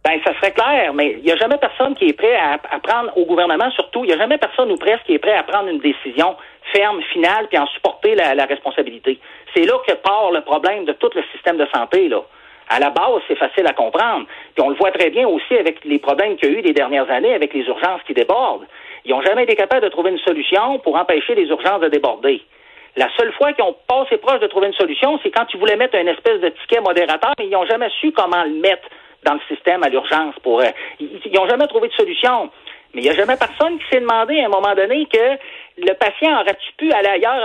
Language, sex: French, male